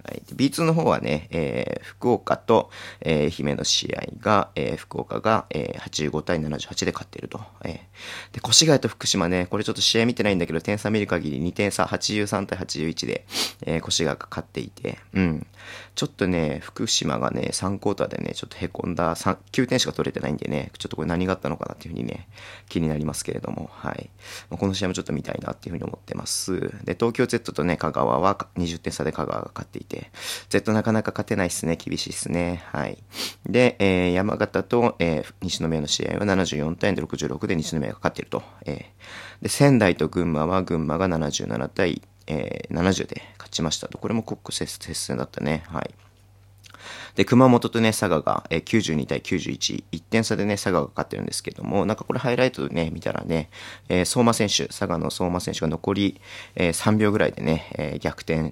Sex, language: male, Japanese